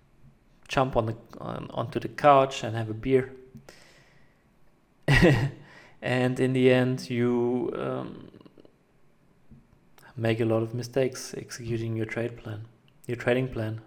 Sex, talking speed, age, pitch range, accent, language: male, 125 wpm, 30-49, 115-130 Hz, German, English